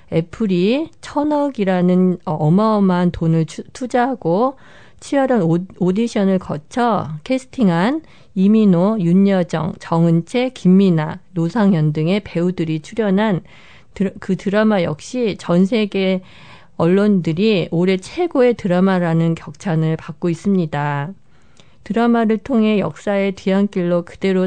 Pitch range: 170-215 Hz